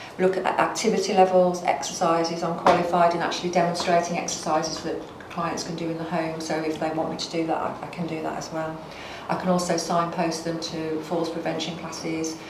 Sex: female